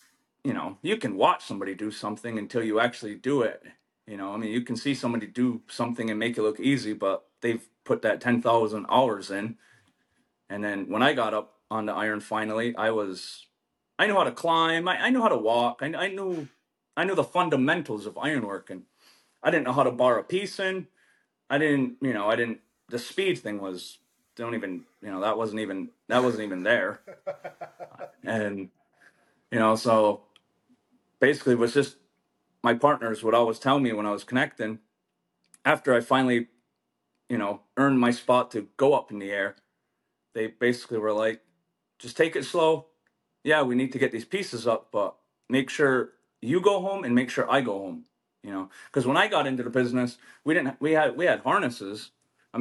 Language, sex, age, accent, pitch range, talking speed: English, male, 30-49, American, 110-140 Hz, 200 wpm